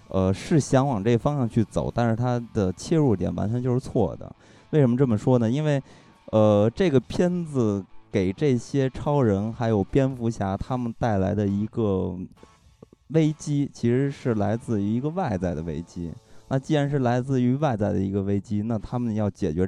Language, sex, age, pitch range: Chinese, male, 20-39, 95-125 Hz